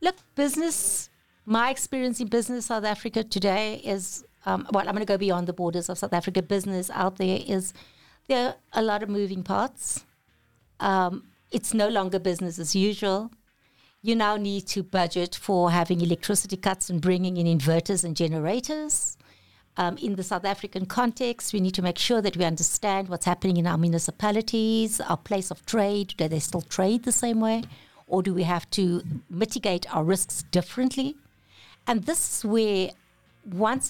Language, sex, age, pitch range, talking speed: English, female, 60-79, 175-225 Hz, 175 wpm